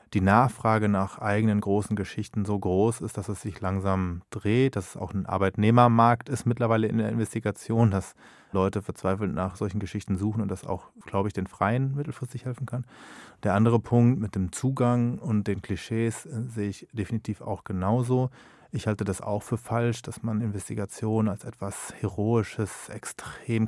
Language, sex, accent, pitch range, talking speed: German, male, German, 100-115 Hz, 175 wpm